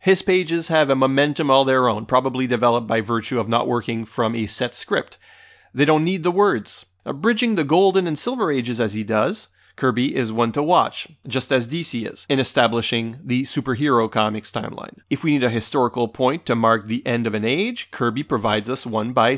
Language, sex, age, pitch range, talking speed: English, male, 30-49, 115-155 Hz, 205 wpm